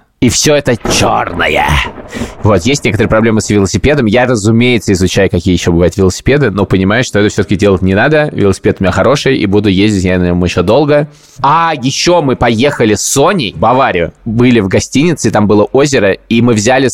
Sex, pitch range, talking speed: male, 105-140 Hz, 190 wpm